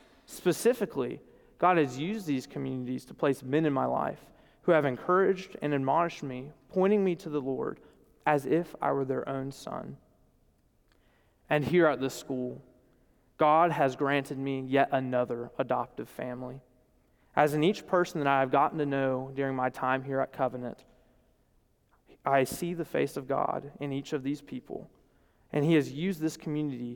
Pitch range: 135-180 Hz